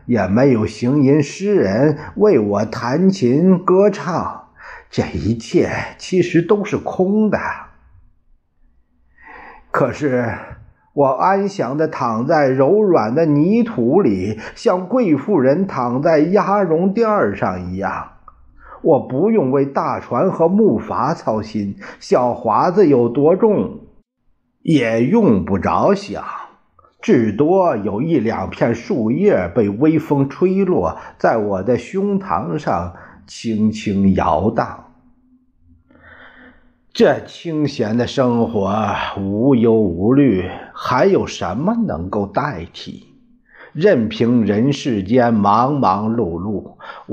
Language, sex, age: Chinese, male, 50-69